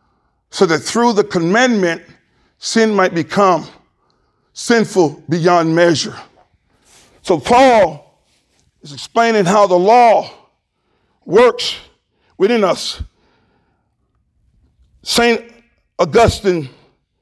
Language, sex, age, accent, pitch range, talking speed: English, male, 50-69, American, 180-235 Hz, 80 wpm